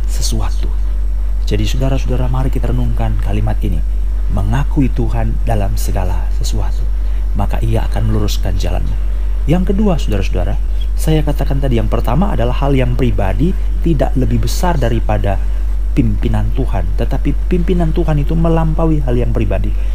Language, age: Indonesian, 30-49